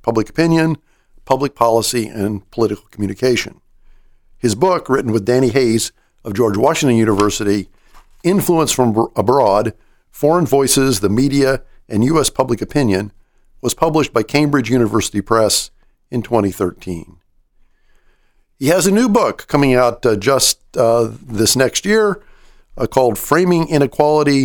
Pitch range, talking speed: 105-140 Hz, 130 wpm